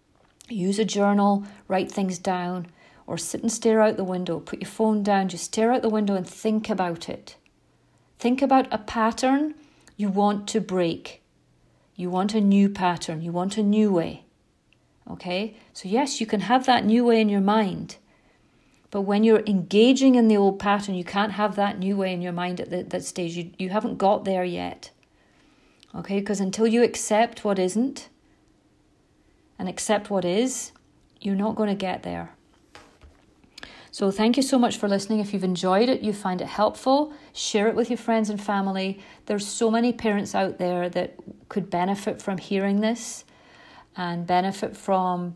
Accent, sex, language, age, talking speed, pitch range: British, female, English, 40-59, 180 wpm, 185-225 Hz